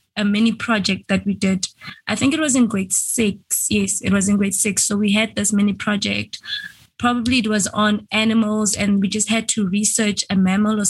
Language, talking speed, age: English, 215 wpm, 20-39